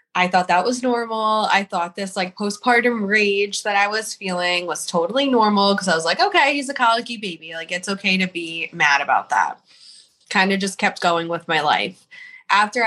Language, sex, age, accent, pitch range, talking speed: English, female, 20-39, American, 175-210 Hz, 205 wpm